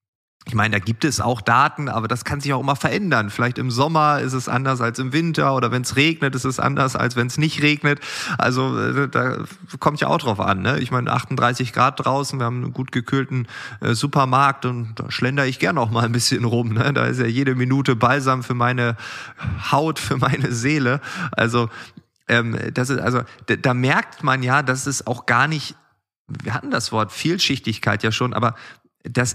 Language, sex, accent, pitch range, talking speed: German, male, German, 120-145 Hz, 210 wpm